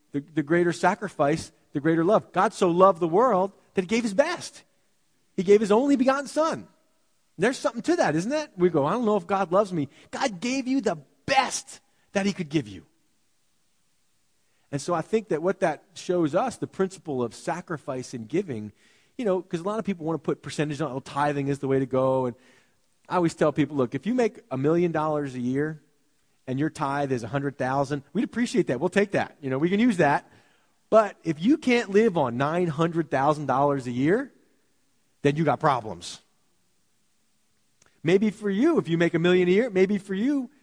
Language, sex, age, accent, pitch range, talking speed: English, male, 40-59, American, 145-205 Hz, 210 wpm